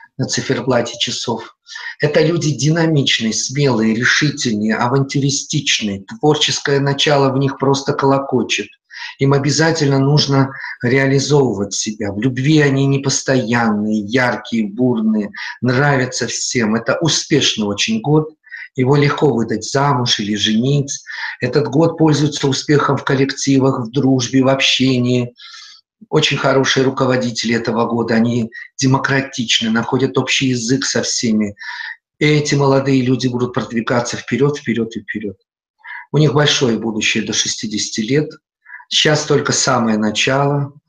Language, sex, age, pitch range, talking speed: Russian, male, 50-69, 115-145 Hz, 120 wpm